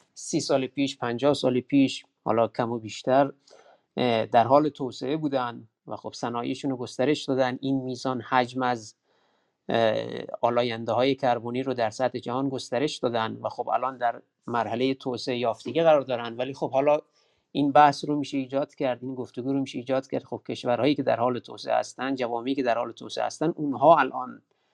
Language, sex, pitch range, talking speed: Persian, male, 120-140 Hz, 170 wpm